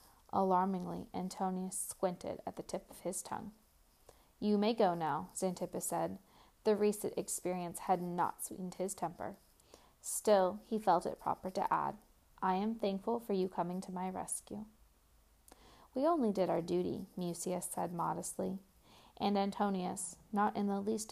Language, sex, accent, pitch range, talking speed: English, female, American, 180-220 Hz, 150 wpm